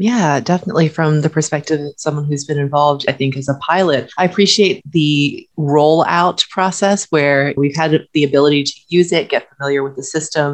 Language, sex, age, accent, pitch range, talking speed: English, female, 30-49, American, 145-180 Hz, 190 wpm